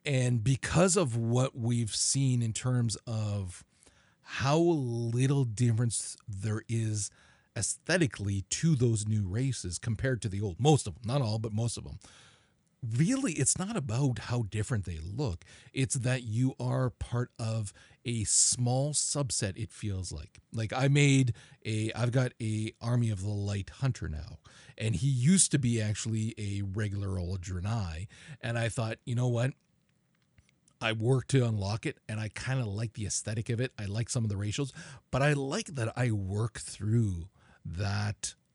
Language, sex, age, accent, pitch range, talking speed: English, male, 40-59, American, 105-140 Hz, 170 wpm